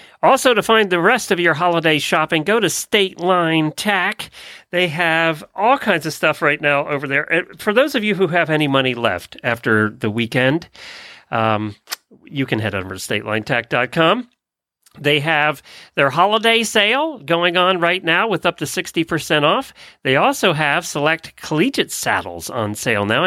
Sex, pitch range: male, 125-175 Hz